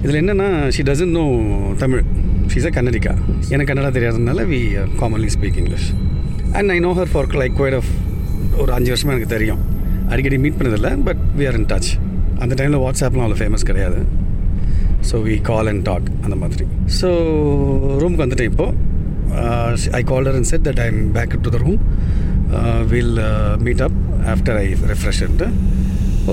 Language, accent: Tamil, native